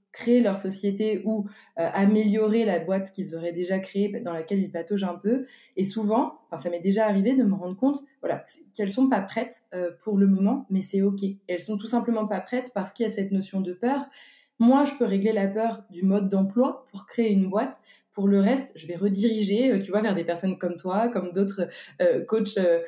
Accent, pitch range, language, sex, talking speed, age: French, 190-230 Hz, French, female, 230 wpm, 20-39